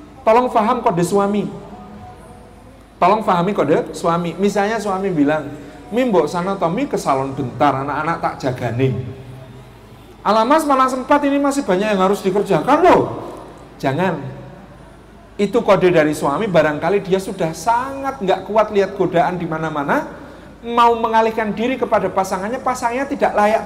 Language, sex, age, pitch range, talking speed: Indonesian, male, 40-59, 175-255 Hz, 135 wpm